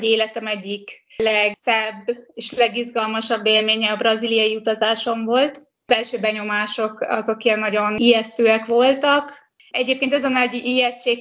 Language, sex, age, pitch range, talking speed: Hungarian, female, 20-39, 220-240 Hz, 130 wpm